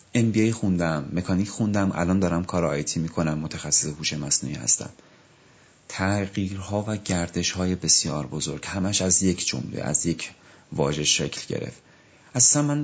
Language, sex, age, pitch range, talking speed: Persian, male, 30-49, 85-100 Hz, 145 wpm